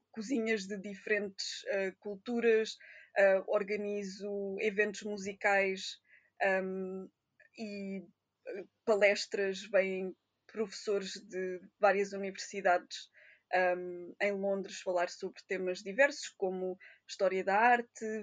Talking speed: 80 wpm